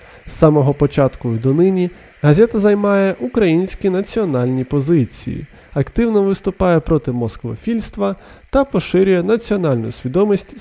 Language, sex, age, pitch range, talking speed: Ukrainian, male, 20-39, 140-210 Hz, 100 wpm